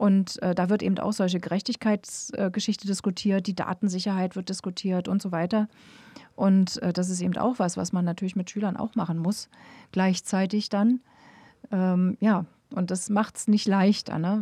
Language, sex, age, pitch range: German, female, 30-49, 185-220 Hz